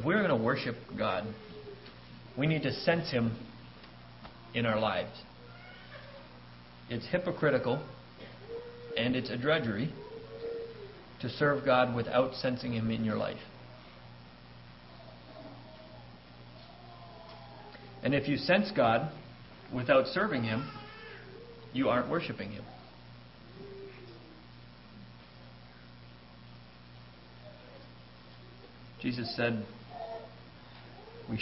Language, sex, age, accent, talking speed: English, male, 40-59, American, 85 wpm